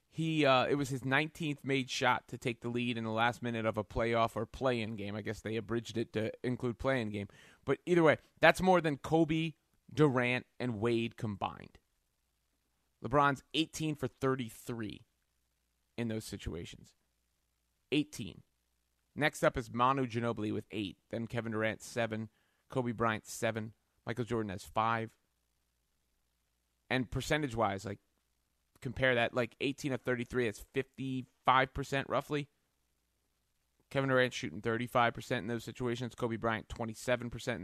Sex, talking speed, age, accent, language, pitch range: male, 145 wpm, 30-49, American, English, 80-130 Hz